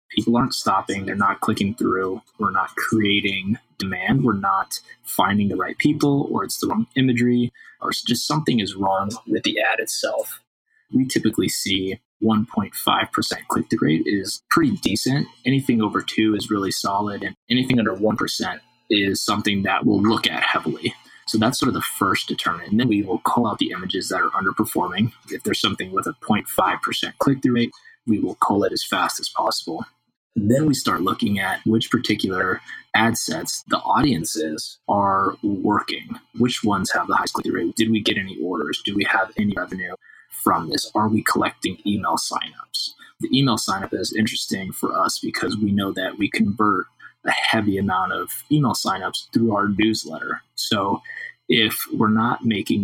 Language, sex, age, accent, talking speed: English, male, 20-39, American, 180 wpm